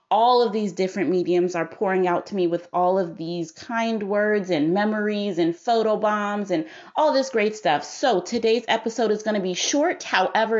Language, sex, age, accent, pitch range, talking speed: English, female, 30-49, American, 175-220 Hz, 200 wpm